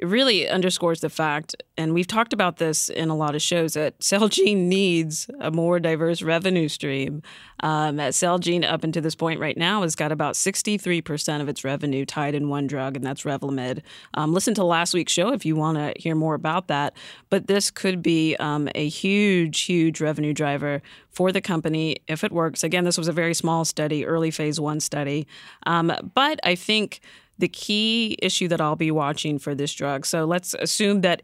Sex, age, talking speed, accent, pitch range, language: female, 30-49, 200 wpm, American, 150-180 Hz, English